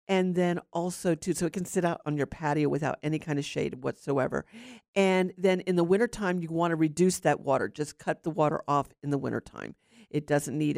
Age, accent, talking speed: 50-69, American, 225 wpm